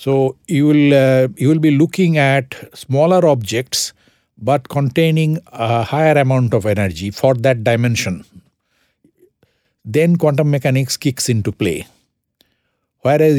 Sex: male